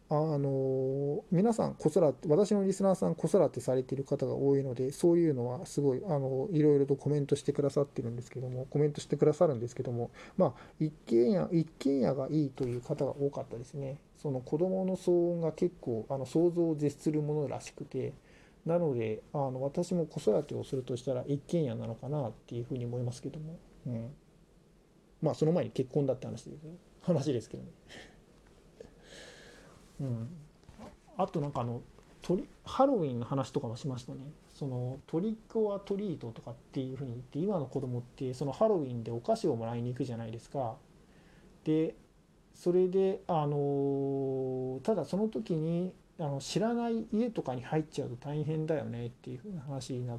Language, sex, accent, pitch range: Japanese, male, native, 130-175 Hz